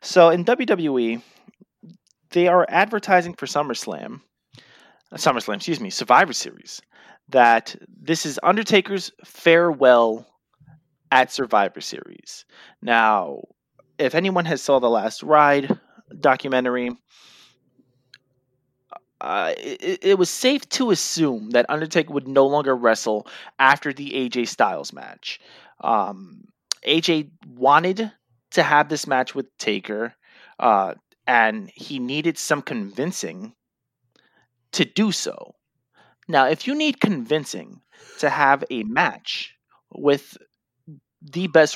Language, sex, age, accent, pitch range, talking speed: English, male, 30-49, American, 130-190 Hz, 110 wpm